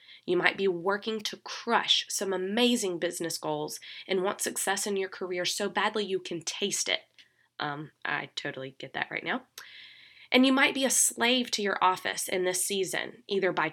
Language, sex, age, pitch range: English, female, 20-39, 165-205 Hz